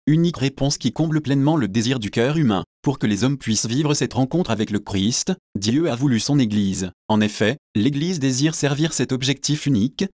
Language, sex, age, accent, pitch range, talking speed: French, male, 30-49, French, 110-150 Hz, 200 wpm